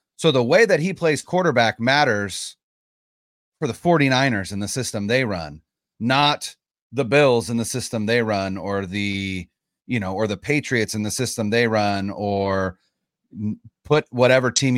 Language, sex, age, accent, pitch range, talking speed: English, male, 30-49, American, 105-145 Hz, 160 wpm